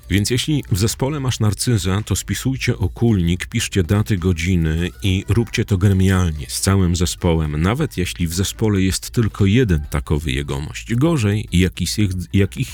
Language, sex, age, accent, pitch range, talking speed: Polish, male, 40-59, native, 80-110 Hz, 140 wpm